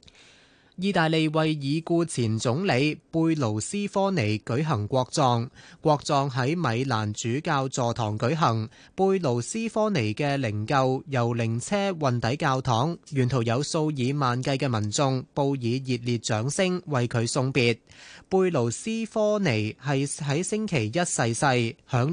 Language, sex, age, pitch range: Chinese, male, 20-39, 120-165 Hz